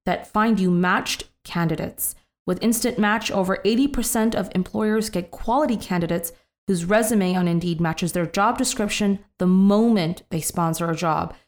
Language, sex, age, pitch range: English, female, 20-39, 175-215 Hz